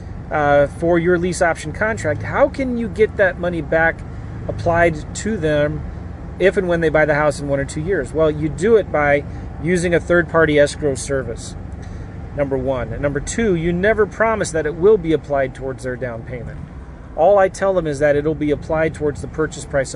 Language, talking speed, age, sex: English, 205 wpm, 30-49, male